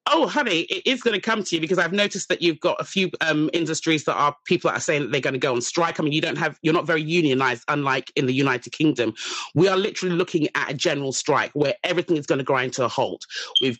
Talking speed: 265 wpm